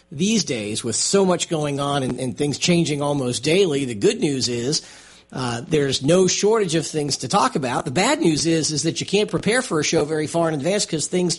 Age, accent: 50-69, American